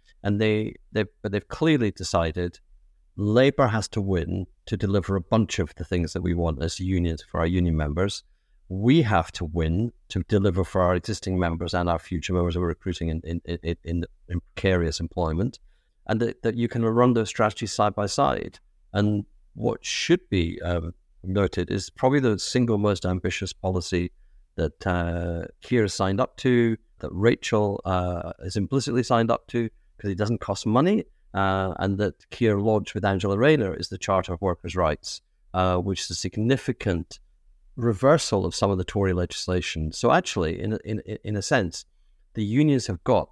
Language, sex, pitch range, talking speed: English, male, 85-110 Hz, 180 wpm